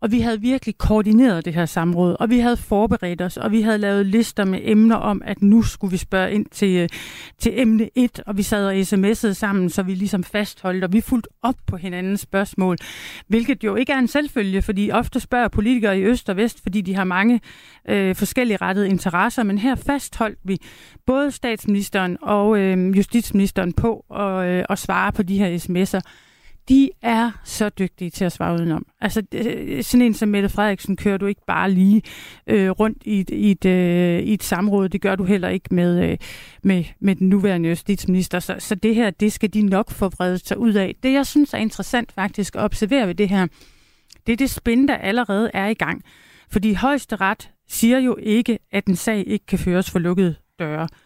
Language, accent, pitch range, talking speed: Danish, native, 190-225 Hz, 205 wpm